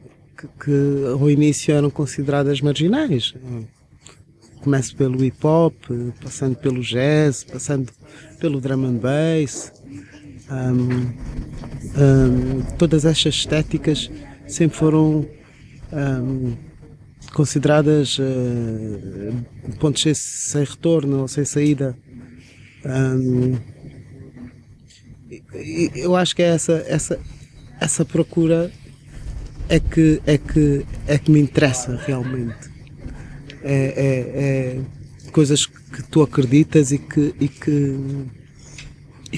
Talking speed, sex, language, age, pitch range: 90 wpm, male, Portuguese, 20-39, 130-150 Hz